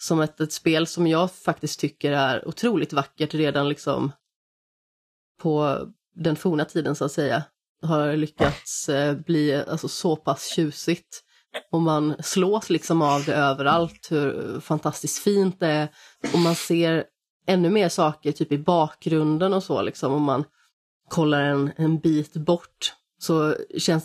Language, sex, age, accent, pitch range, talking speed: Swedish, female, 30-49, native, 150-170 Hz, 150 wpm